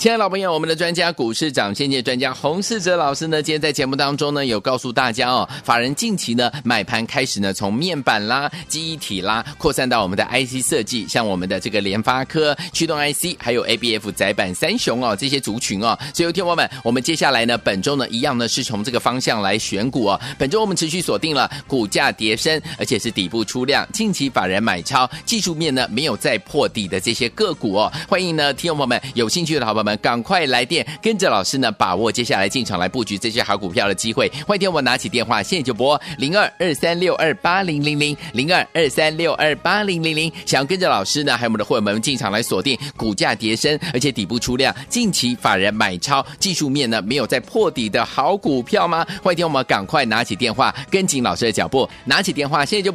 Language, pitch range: Chinese, 120-170 Hz